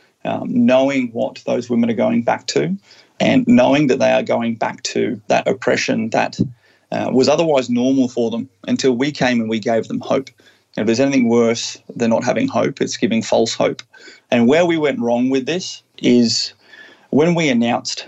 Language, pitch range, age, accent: English, 115-145 Hz, 30-49, Australian